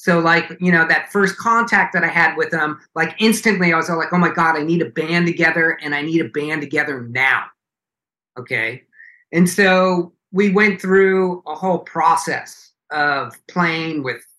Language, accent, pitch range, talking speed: English, American, 150-190 Hz, 190 wpm